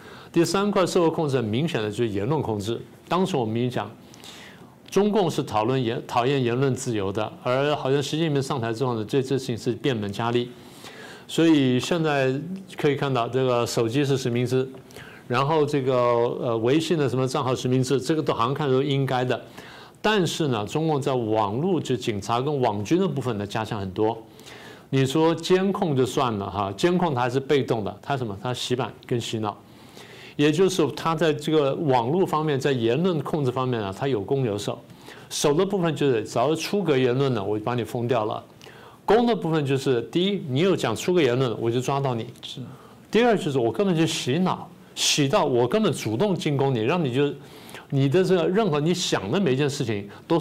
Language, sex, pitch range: Chinese, male, 120-155 Hz